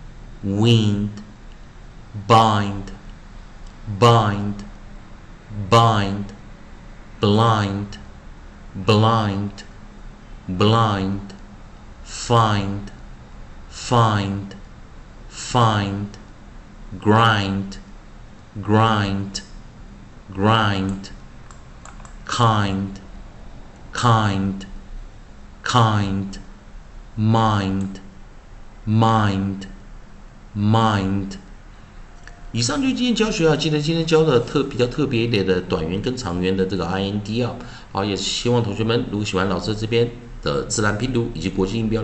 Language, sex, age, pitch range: Chinese, male, 40-59, 95-120 Hz